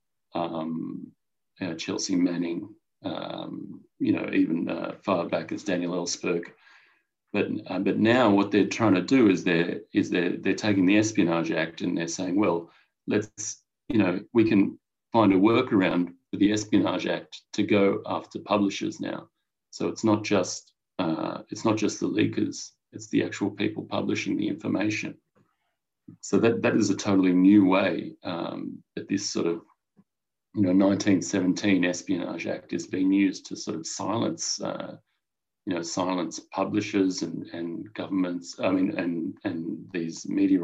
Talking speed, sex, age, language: 160 wpm, male, 30-49, English